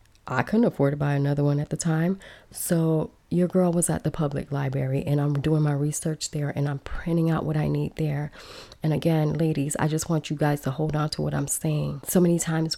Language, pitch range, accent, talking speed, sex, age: English, 145-160 Hz, American, 235 wpm, female, 20-39